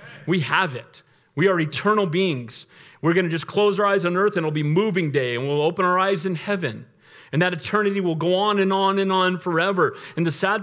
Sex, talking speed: male, 235 wpm